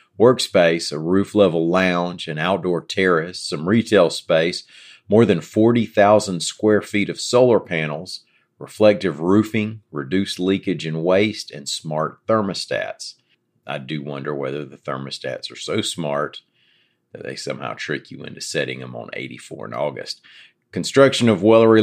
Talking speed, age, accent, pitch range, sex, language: 140 wpm, 40-59, American, 75-105 Hz, male, English